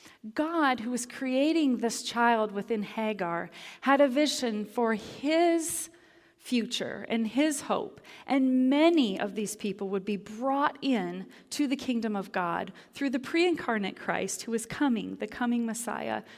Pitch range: 205-255 Hz